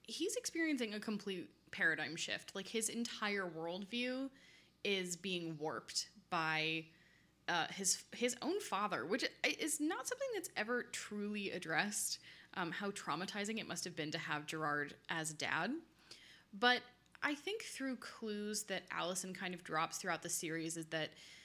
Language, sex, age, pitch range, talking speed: English, female, 10-29, 165-215 Hz, 150 wpm